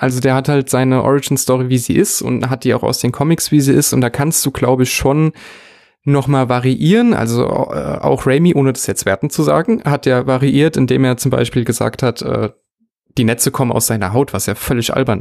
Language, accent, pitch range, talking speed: German, German, 115-135 Hz, 235 wpm